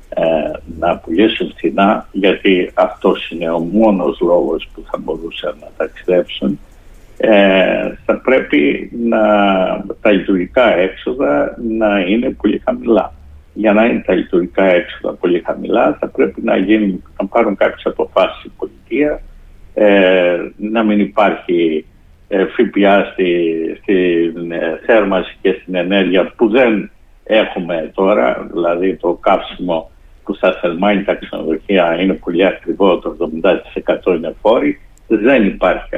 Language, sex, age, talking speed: Greek, male, 60-79, 115 wpm